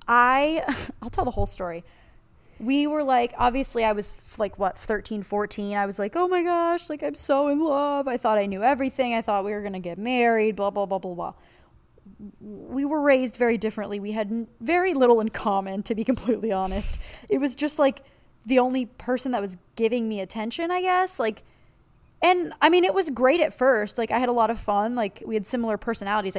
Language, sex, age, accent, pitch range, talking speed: English, female, 20-39, American, 205-275 Hz, 225 wpm